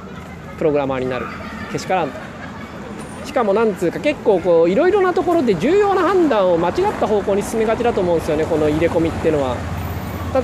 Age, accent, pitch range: 20-39, native, 145-235 Hz